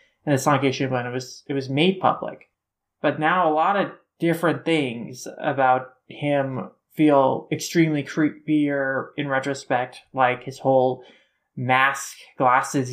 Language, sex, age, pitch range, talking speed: English, male, 20-39, 135-155 Hz, 140 wpm